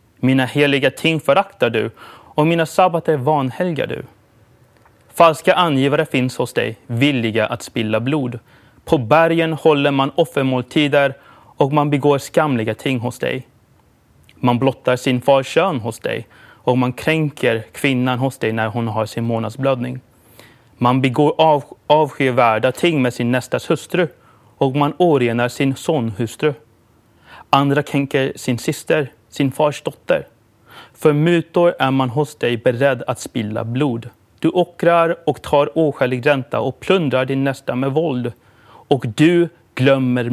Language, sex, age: Swedish, male, 30-49